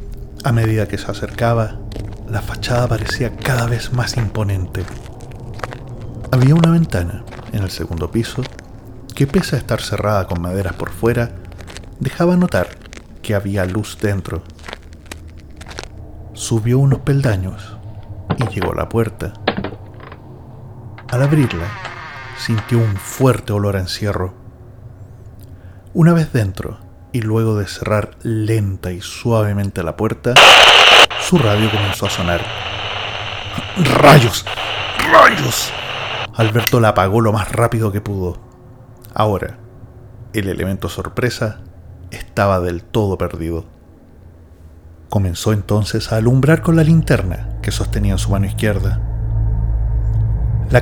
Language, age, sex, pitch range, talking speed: English, 40-59, male, 95-120 Hz, 115 wpm